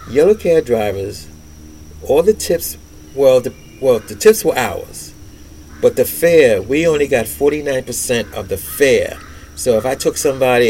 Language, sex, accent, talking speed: English, male, American, 170 wpm